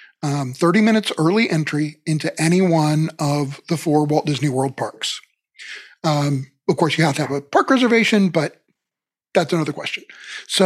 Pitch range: 150-190 Hz